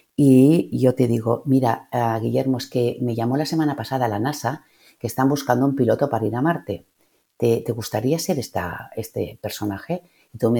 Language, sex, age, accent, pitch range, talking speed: Spanish, female, 50-69, Spanish, 115-165 Hz, 205 wpm